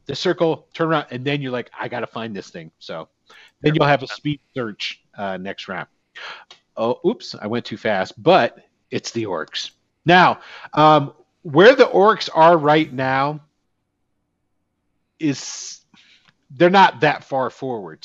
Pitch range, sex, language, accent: 115-155 Hz, male, English, American